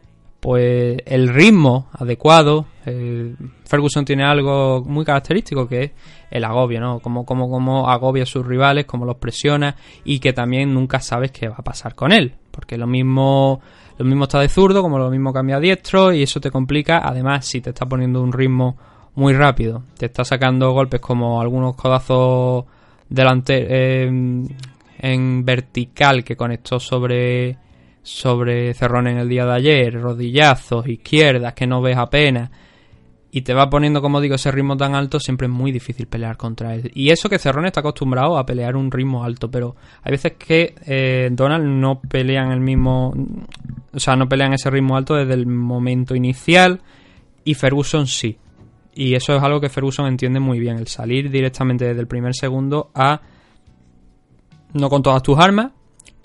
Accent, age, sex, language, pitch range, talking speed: Spanish, 20-39, male, Spanish, 125-140 Hz, 175 wpm